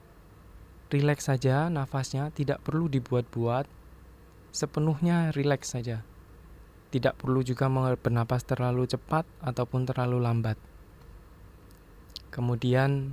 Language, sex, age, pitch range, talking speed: Indonesian, male, 20-39, 95-140 Hz, 85 wpm